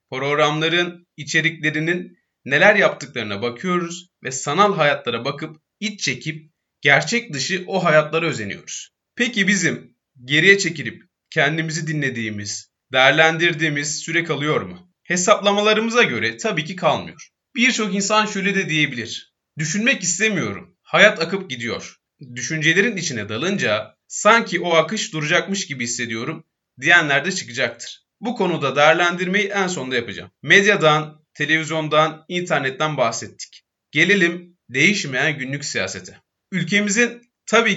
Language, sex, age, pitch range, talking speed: Turkish, male, 30-49, 140-190 Hz, 110 wpm